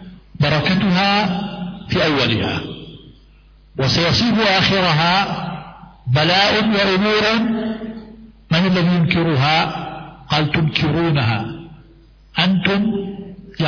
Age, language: 50-69, English